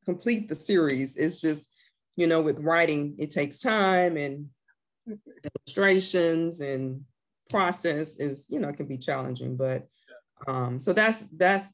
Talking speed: 145 wpm